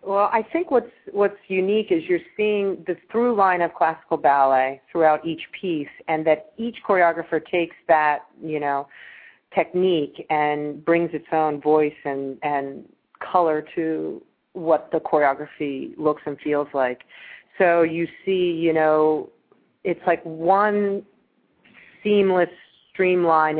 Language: English